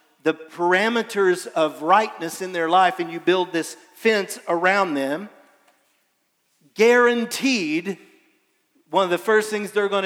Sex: male